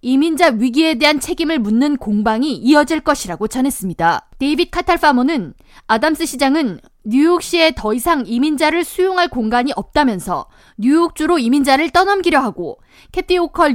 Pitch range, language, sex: 240-325 Hz, Korean, female